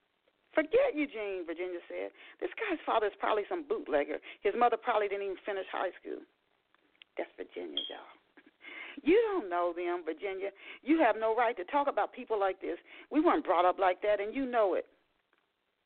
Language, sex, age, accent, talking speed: English, female, 40-59, American, 180 wpm